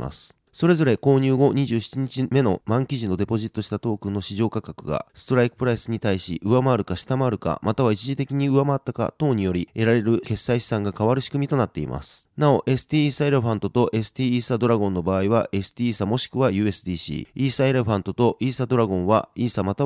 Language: Japanese